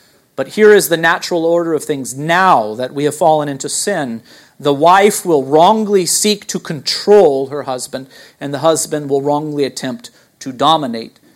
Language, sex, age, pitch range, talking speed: English, male, 40-59, 130-160 Hz, 170 wpm